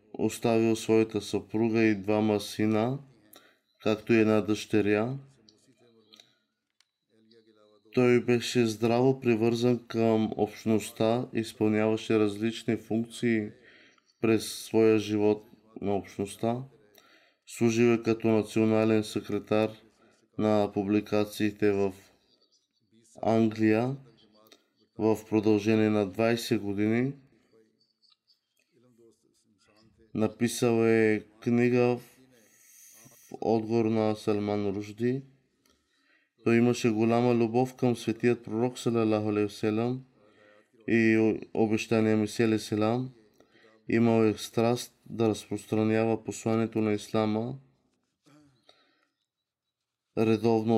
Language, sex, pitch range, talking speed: Bulgarian, male, 110-120 Hz, 80 wpm